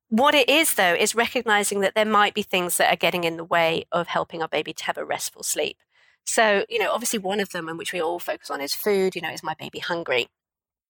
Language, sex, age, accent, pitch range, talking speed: English, female, 40-59, British, 180-230 Hz, 260 wpm